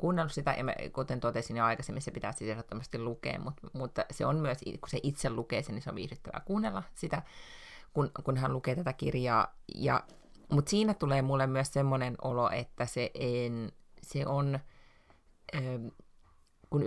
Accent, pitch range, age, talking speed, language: native, 120-145 Hz, 30-49, 170 wpm, Finnish